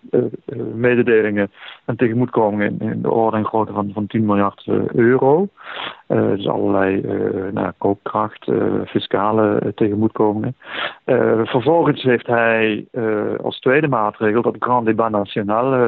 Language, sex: Dutch, male